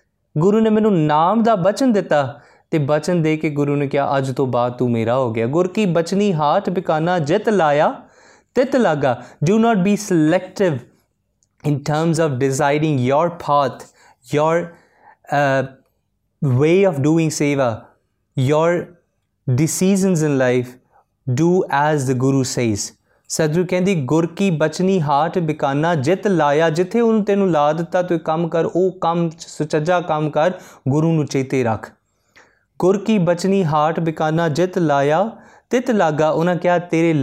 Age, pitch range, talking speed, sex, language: 20-39, 135-180 Hz, 150 wpm, male, Punjabi